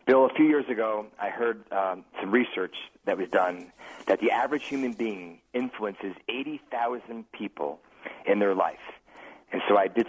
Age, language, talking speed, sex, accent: 40-59, English, 165 wpm, male, American